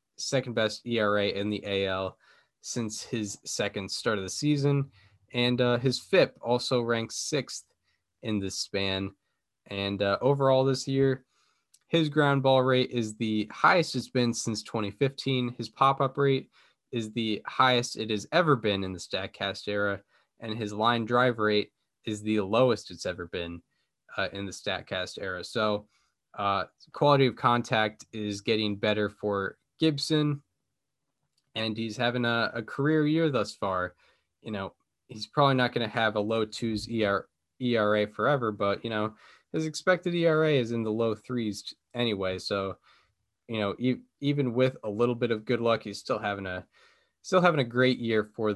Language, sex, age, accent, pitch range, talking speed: English, male, 10-29, American, 105-130 Hz, 170 wpm